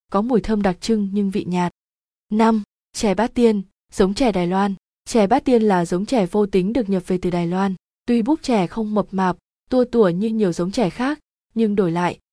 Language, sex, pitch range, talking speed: Vietnamese, female, 185-225 Hz, 225 wpm